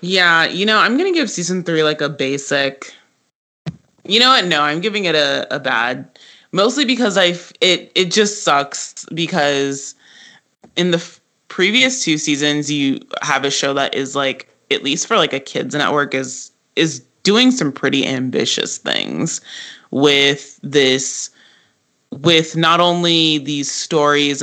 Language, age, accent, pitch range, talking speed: English, 20-39, American, 140-165 Hz, 155 wpm